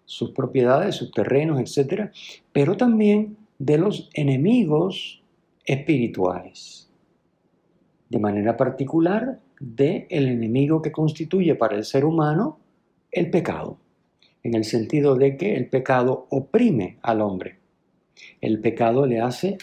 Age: 50-69